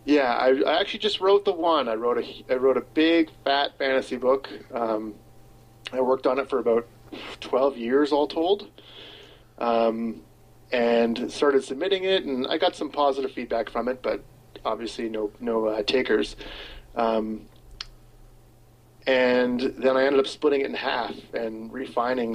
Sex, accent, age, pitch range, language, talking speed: male, American, 30-49, 115-135 Hz, English, 160 wpm